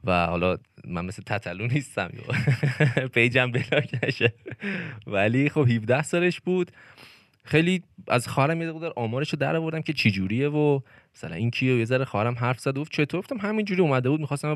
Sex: male